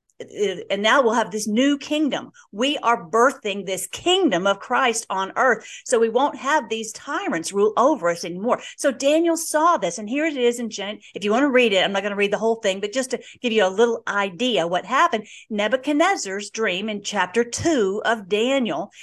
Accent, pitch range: American, 205-275 Hz